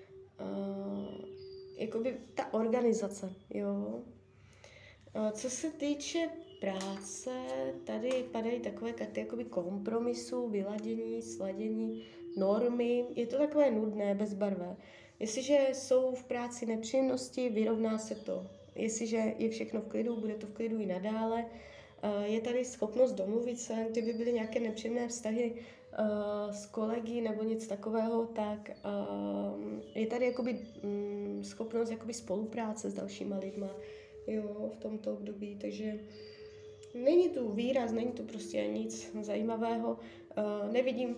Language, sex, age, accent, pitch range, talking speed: Czech, female, 20-39, native, 185-235 Hz, 120 wpm